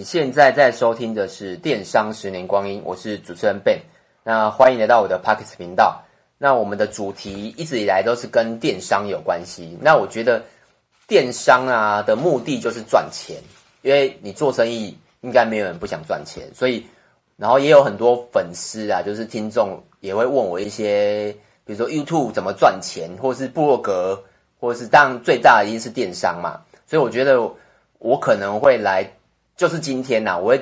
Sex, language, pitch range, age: male, Chinese, 100-125 Hz, 30-49